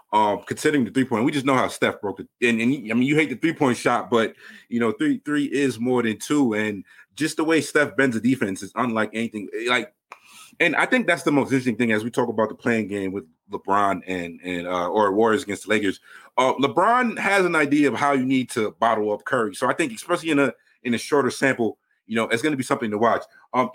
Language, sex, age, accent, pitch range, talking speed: English, male, 30-49, American, 110-145 Hz, 250 wpm